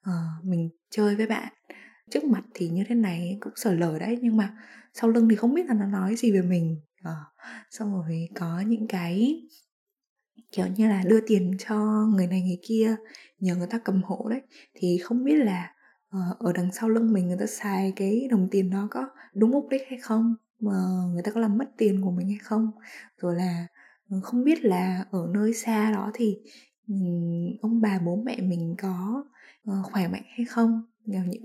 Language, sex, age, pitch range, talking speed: Vietnamese, female, 20-39, 185-230 Hz, 205 wpm